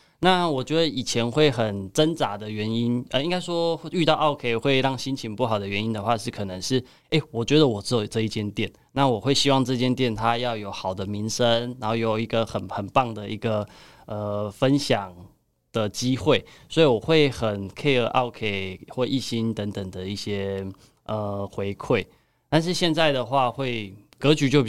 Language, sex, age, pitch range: Chinese, male, 20-39, 105-140 Hz